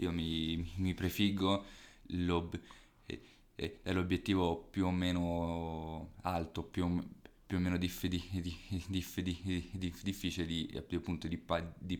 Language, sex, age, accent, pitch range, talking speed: Italian, male, 20-39, native, 85-95 Hz, 85 wpm